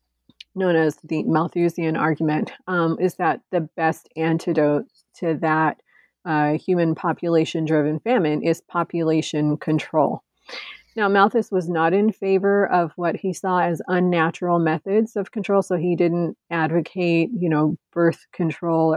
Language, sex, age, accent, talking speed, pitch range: English, female, 30-49, American, 135 wpm, 160-185 Hz